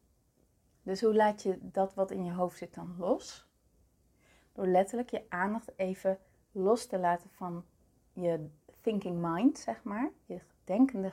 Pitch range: 180-235 Hz